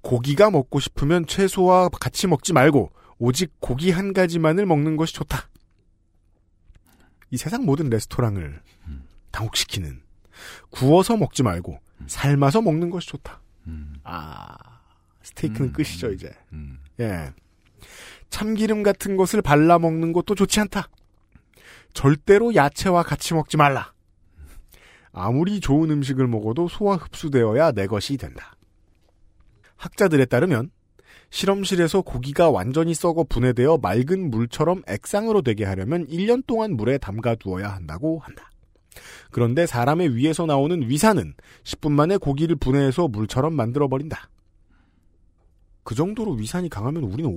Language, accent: Korean, native